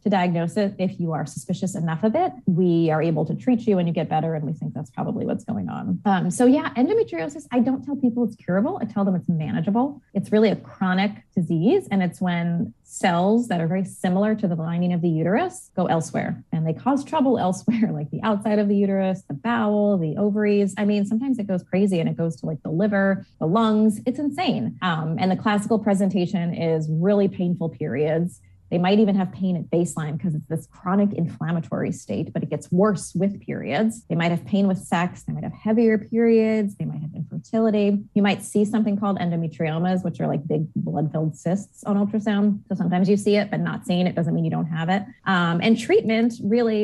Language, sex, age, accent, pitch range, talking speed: English, female, 20-39, American, 170-210 Hz, 220 wpm